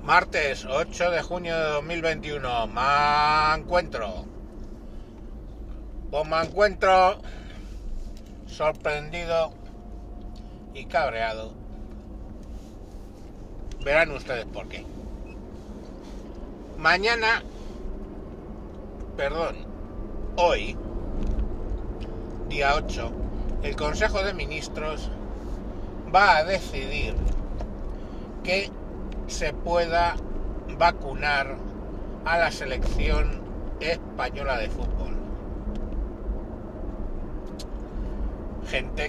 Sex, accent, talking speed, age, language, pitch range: male, Spanish, 65 wpm, 60-79, Spanish, 100-155 Hz